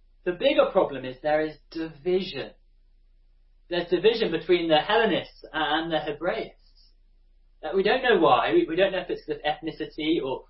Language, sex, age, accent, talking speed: English, male, 30-49, British, 155 wpm